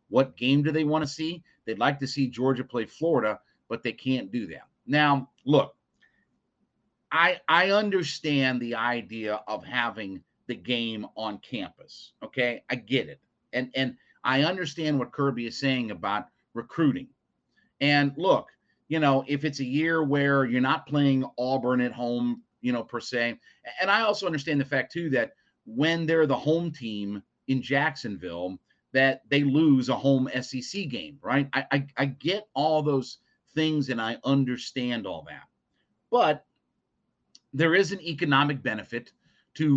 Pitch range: 120-150 Hz